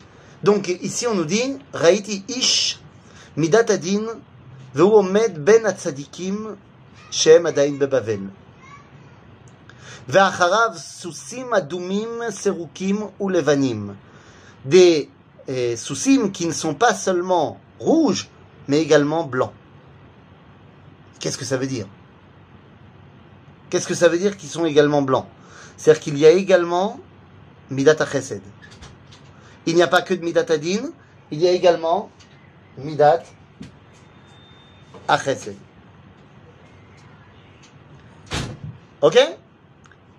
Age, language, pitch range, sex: 30-49, French, 130-200 Hz, male